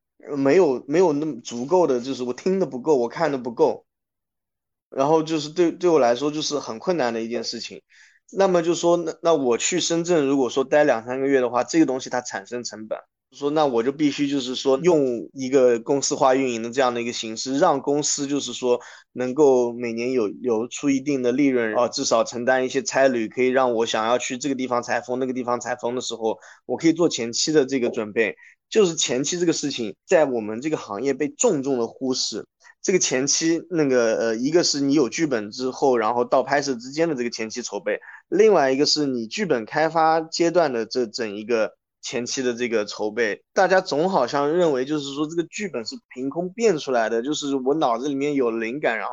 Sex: male